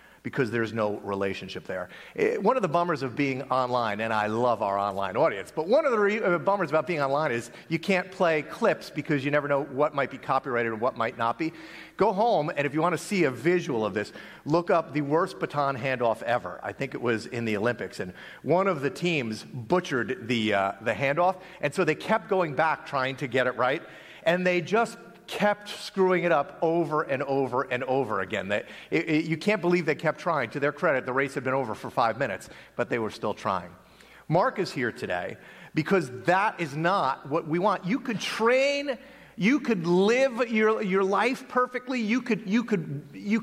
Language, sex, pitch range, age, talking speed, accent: English, male, 135-205 Hz, 40-59, 215 wpm, American